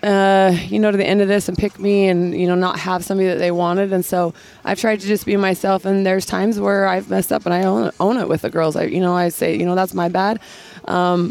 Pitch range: 180-200 Hz